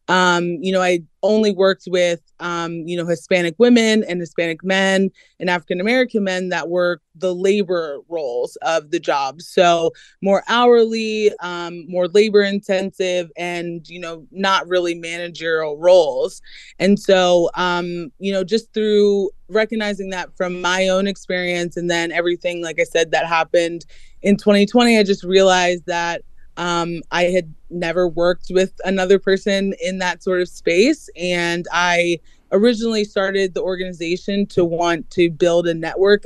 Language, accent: English, American